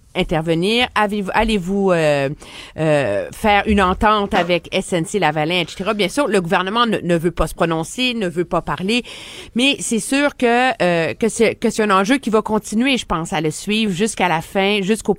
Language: French